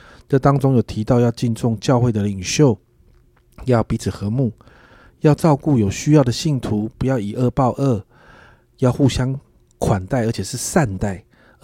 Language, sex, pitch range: Chinese, male, 105-135 Hz